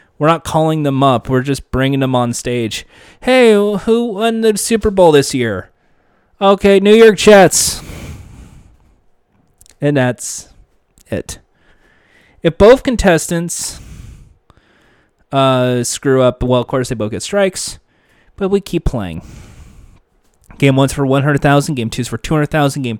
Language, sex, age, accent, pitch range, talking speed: English, male, 30-49, American, 125-170 Hz, 135 wpm